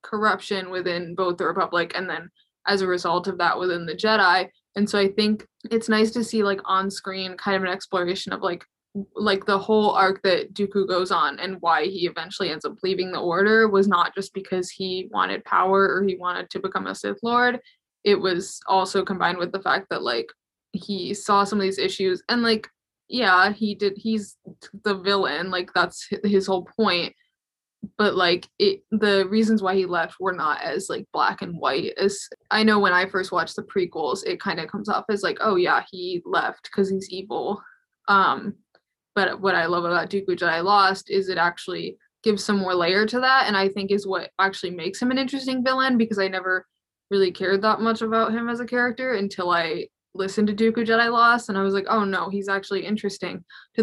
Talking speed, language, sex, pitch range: 210 wpm, English, female, 185-215 Hz